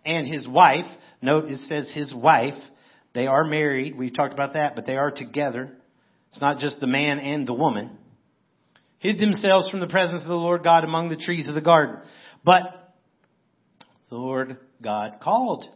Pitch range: 120-160 Hz